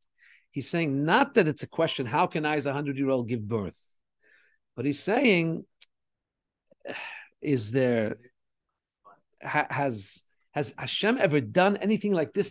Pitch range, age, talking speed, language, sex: 145-215 Hz, 50-69, 140 wpm, English, male